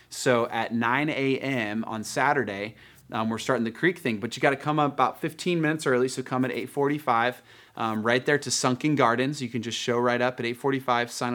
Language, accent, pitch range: English, American, 115-140 Hz